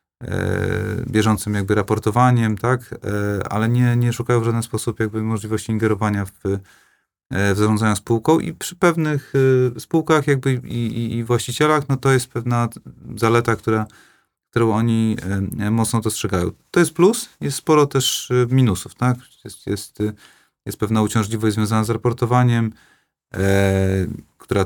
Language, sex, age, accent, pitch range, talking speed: Polish, male, 40-59, native, 105-125 Hz, 135 wpm